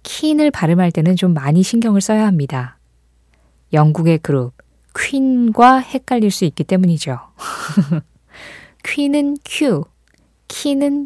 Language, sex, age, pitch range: Korean, female, 20-39, 160-235 Hz